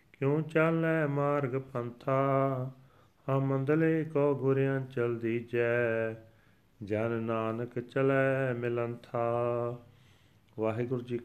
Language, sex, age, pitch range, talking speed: Punjabi, male, 40-59, 105-120 Hz, 75 wpm